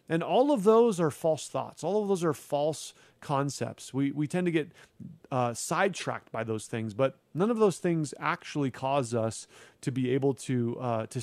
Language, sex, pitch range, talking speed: English, male, 135-195 Hz, 200 wpm